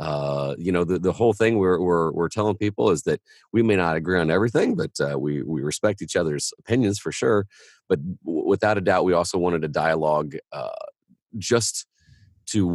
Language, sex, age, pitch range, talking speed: English, male, 40-59, 80-105 Hz, 205 wpm